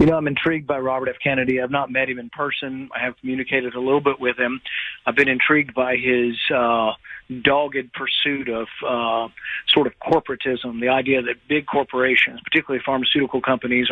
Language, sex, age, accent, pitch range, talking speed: English, male, 40-59, American, 125-145 Hz, 185 wpm